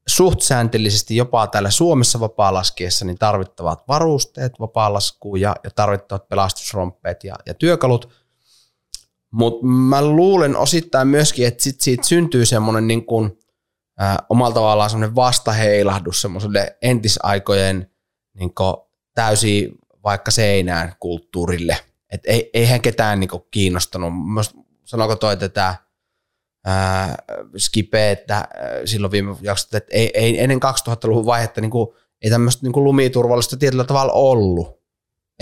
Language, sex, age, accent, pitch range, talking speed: Finnish, male, 20-39, native, 100-125 Hz, 100 wpm